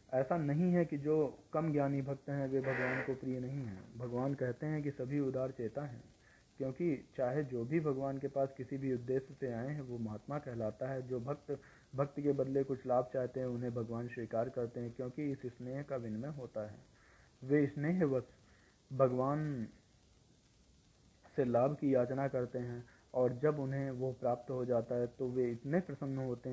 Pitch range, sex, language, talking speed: 120-140 Hz, male, Hindi, 190 wpm